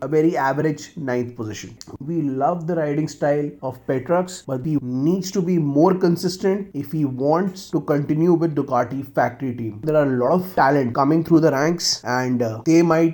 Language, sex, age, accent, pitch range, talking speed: Hindi, male, 30-49, native, 135-170 Hz, 190 wpm